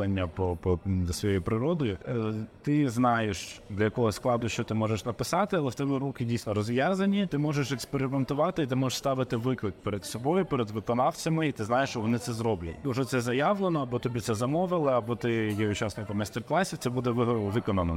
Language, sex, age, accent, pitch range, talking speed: Ukrainian, male, 20-39, native, 105-135 Hz, 180 wpm